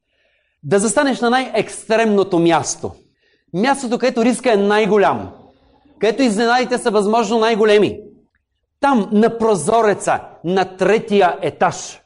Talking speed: 105 wpm